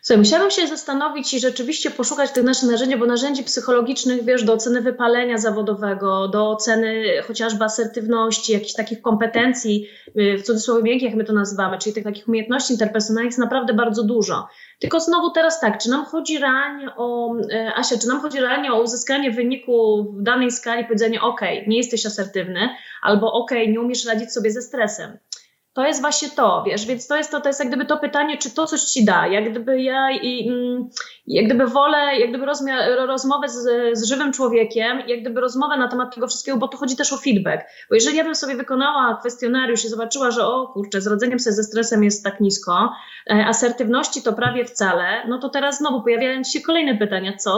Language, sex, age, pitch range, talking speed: Polish, female, 20-39, 225-265 Hz, 200 wpm